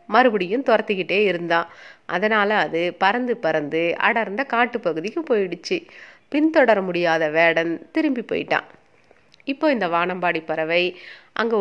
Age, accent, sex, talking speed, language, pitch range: 30-49, native, female, 105 wpm, Tamil, 175-230 Hz